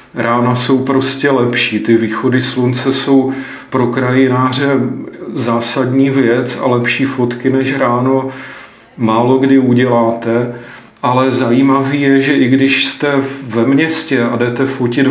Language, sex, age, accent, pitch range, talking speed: Czech, male, 40-59, native, 125-135 Hz, 125 wpm